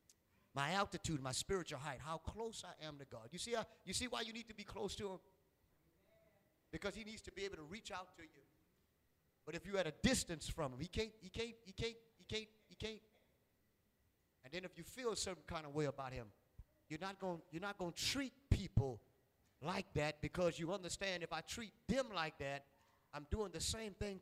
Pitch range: 155-225 Hz